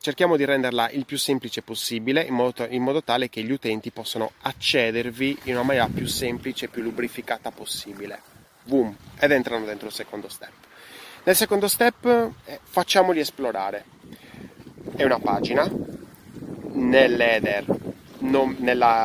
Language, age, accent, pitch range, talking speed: Italian, 20-39, native, 110-130 Hz, 130 wpm